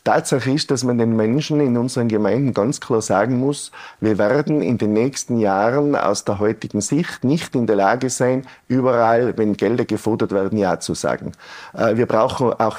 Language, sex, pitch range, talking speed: German, male, 115-140 Hz, 185 wpm